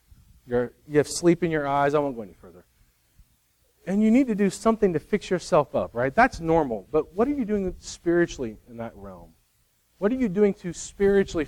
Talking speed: 210 wpm